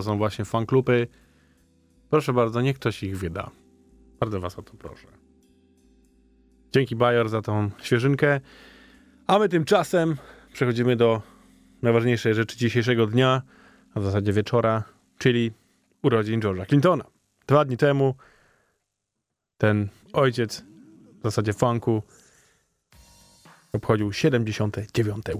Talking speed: 110 wpm